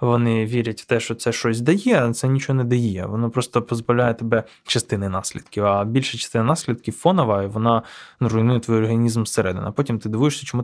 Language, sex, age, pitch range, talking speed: Ukrainian, male, 20-39, 115-140 Hz, 195 wpm